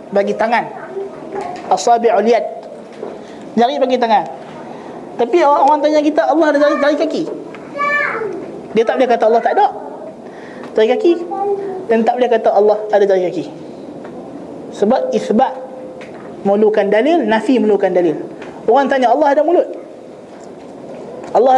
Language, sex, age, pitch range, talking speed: Malay, male, 20-39, 215-315 Hz, 125 wpm